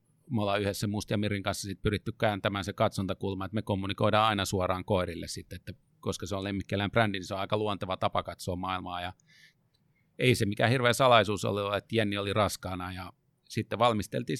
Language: Finnish